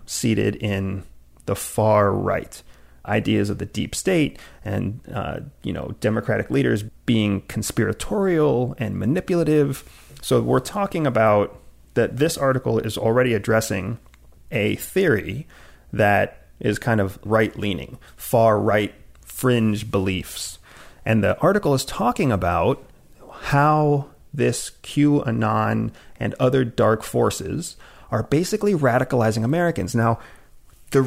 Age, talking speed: 30-49, 120 wpm